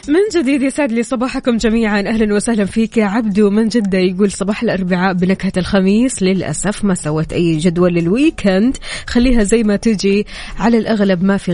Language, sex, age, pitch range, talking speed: Arabic, female, 20-39, 180-225 Hz, 170 wpm